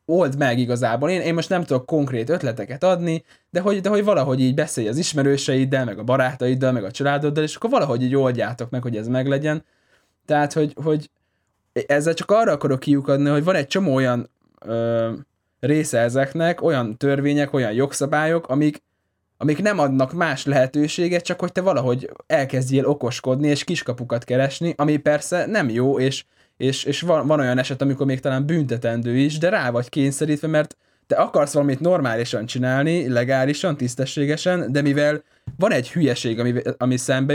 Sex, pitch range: male, 125-150 Hz